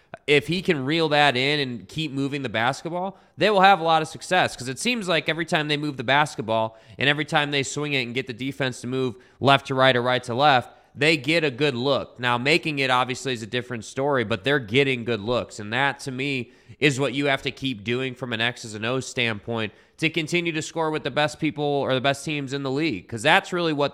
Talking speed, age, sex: 255 wpm, 20-39, male